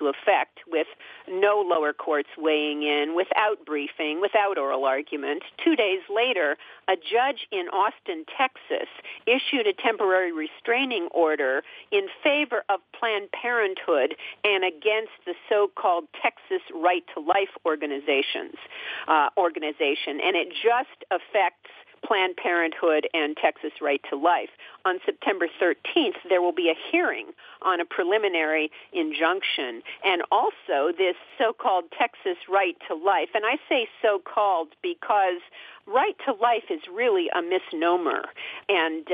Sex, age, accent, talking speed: female, 50-69, American, 130 wpm